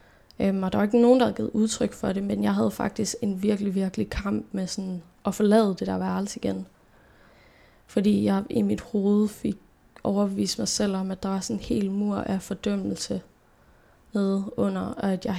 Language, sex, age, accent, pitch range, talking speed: Danish, female, 10-29, native, 180-215 Hz, 200 wpm